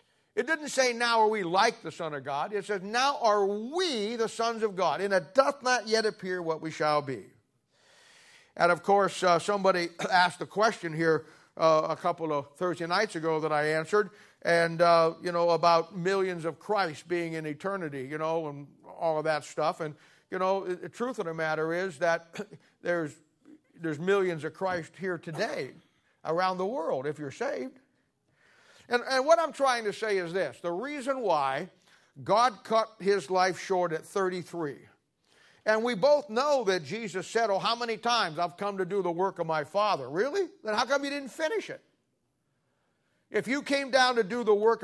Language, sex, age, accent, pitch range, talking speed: English, male, 50-69, American, 165-225 Hz, 195 wpm